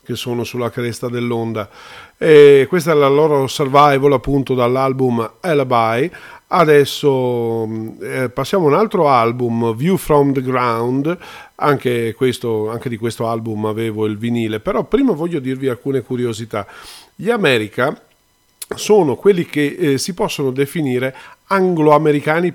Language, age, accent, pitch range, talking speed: Italian, 40-59, native, 115-150 Hz, 135 wpm